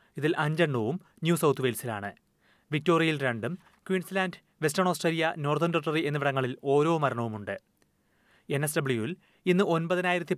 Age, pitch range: 30-49, 130-175 Hz